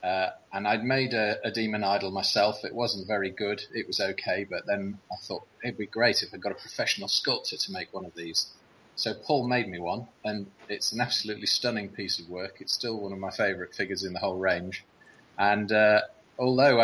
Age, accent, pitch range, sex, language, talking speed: 30-49, British, 100-115 Hz, male, English, 215 wpm